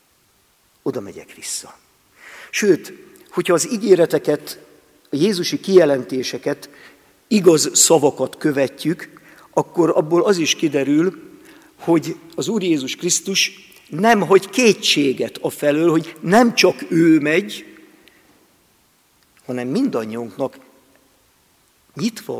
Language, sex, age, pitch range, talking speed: Hungarian, male, 50-69, 150-195 Hz, 95 wpm